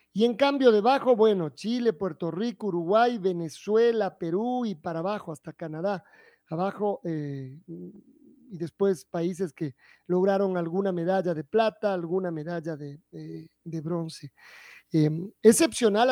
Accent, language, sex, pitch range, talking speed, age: Mexican, Spanish, male, 170-220 Hz, 125 wpm, 40-59